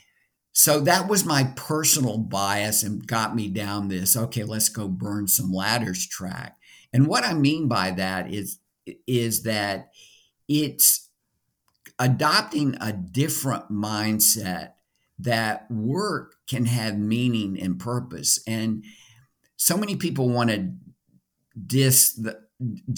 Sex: male